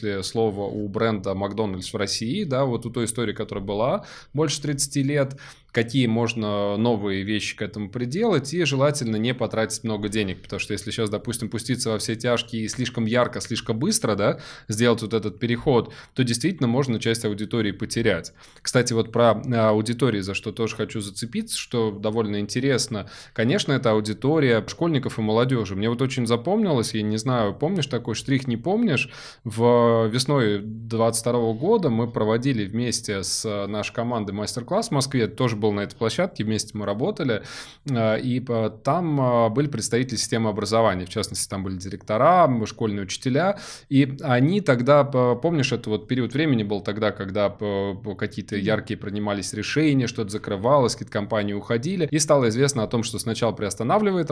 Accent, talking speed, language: native, 160 wpm, Russian